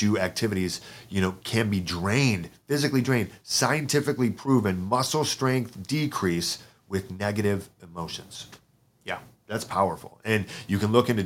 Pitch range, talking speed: 95-125 Hz, 130 wpm